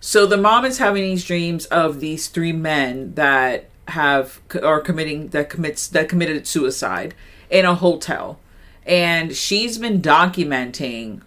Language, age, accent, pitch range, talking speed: English, 40-59, American, 135-170 Hz, 145 wpm